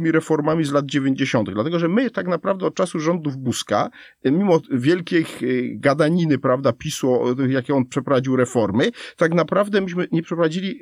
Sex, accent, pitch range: male, native, 125-170 Hz